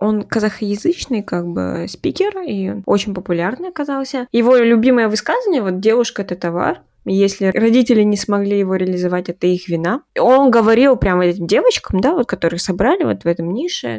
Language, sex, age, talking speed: Russian, female, 20-39, 165 wpm